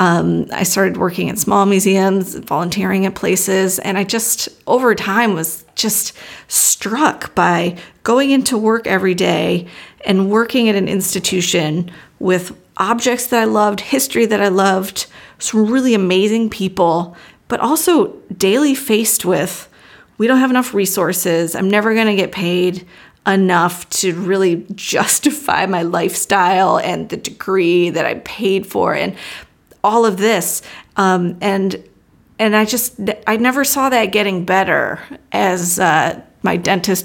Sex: female